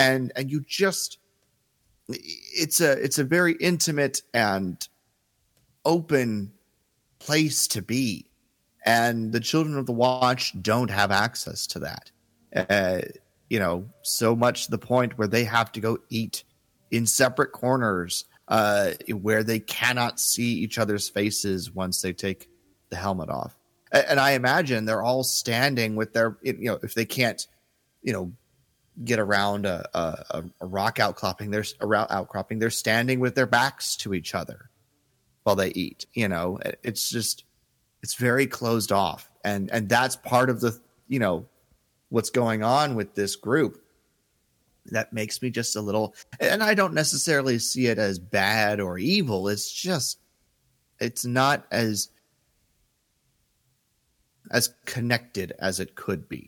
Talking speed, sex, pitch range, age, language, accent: 150 wpm, male, 105-130 Hz, 30-49, English, American